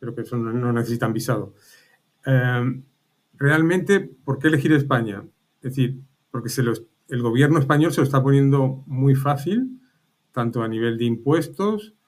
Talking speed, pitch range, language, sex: 155 wpm, 115-140 Hz, Spanish, male